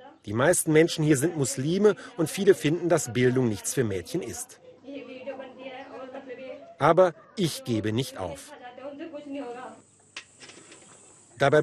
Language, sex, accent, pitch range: German, male, German, 135-180 Hz